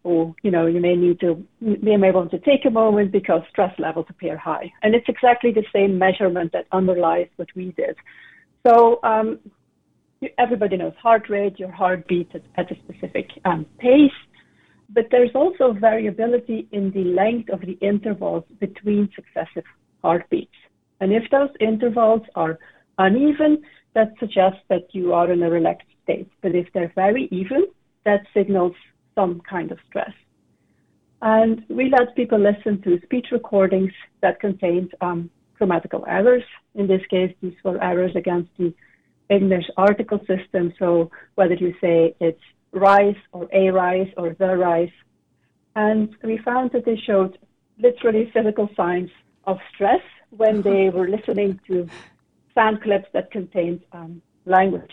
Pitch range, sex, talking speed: 180-220 Hz, female, 150 wpm